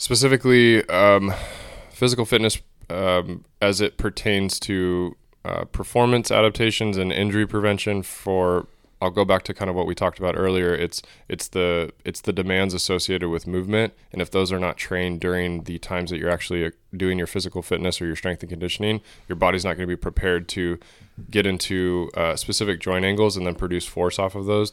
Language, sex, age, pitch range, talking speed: English, male, 20-39, 90-100 Hz, 190 wpm